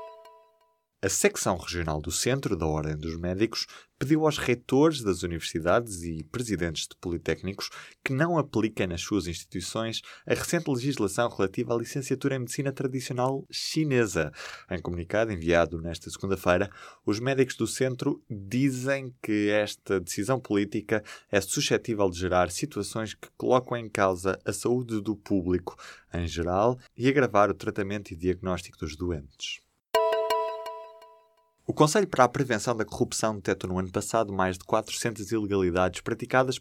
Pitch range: 95-125 Hz